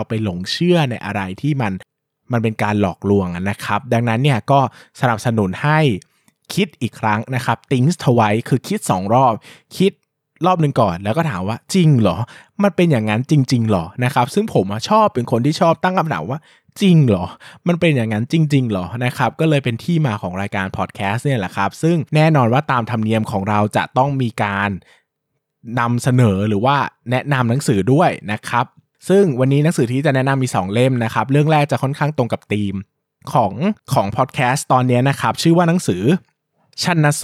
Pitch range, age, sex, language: 110-150 Hz, 20-39, male, Thai